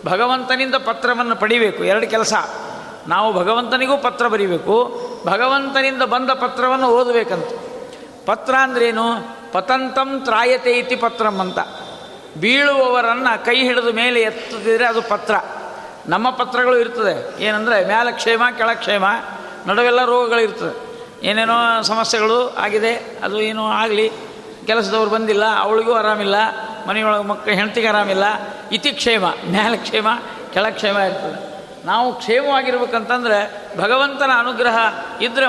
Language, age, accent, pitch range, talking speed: Kannada, 60-79, native, 215-250 Hz, 100 wpm